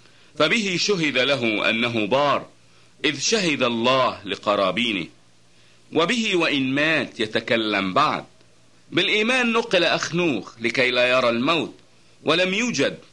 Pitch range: 120-180 Hz